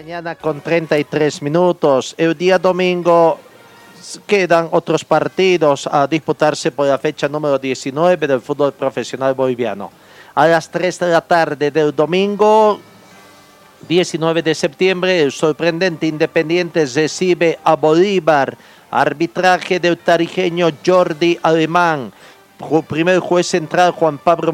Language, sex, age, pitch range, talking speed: Spanish, male, 50-69, 140-175 Hz, 115 wpm